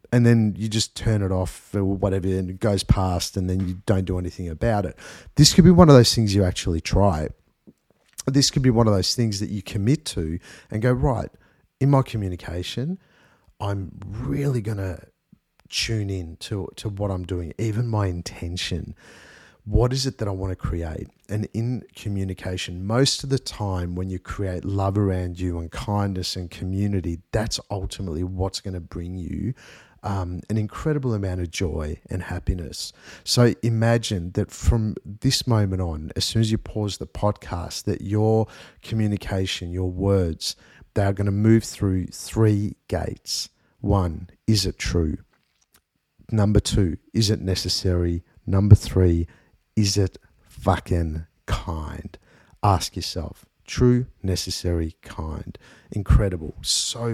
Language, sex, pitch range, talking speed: English, male, 90-110 Hz, 160 wpm